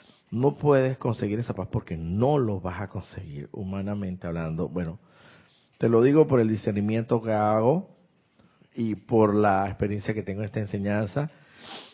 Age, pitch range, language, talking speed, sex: 50-69, 105-125 Hz, Spanish, 155 wpm, male